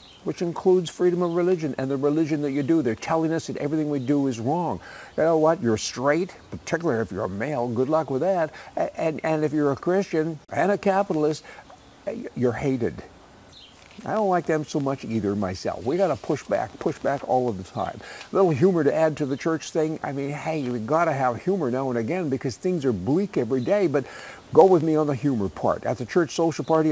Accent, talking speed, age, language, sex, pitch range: American, 225 wpm, 60-79, English, male, 125-165 Hz